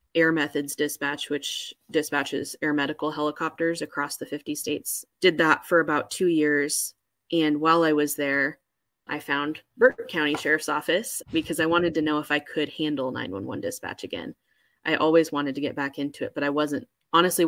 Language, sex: English, female